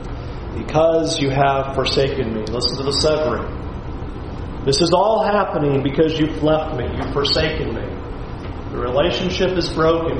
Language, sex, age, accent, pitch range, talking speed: English, male, 40-59, American, 150-255 Hz, 140 wpm